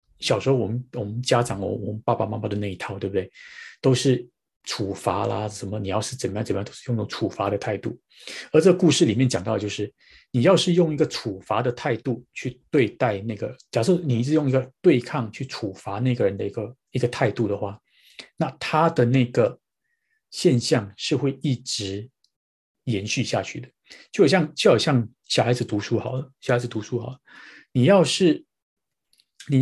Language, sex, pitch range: Chinese, male, 110-135 Hz